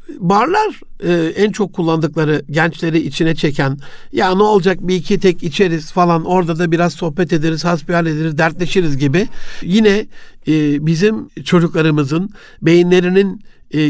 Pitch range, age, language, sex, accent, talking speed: 160-195 Hz, 60-79, Turkish, male, native, 135 wpm